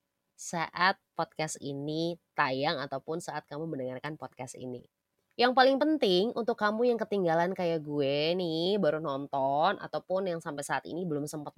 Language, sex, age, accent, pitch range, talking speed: Indonesian, female, 20-39, native, 150-215 Hz, 150 wpm